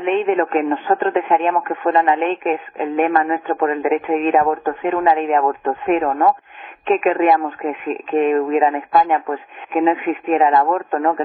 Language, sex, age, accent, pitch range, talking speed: Spanish, female, 40-59, Spanish, 155-200 Hz, 235 wpm